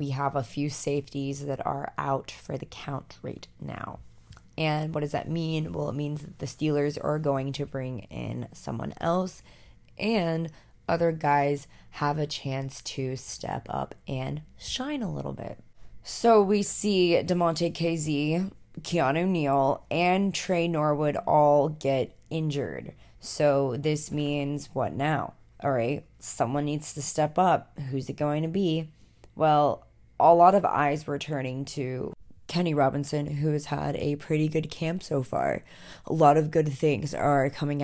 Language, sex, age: English, female, 20-39